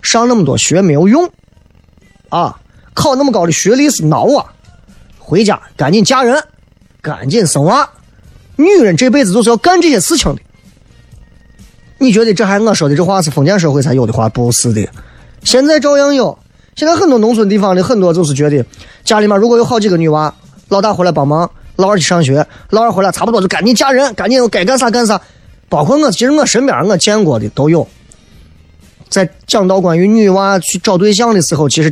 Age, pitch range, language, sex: 20-39, 150-235 Hz, Chinese, male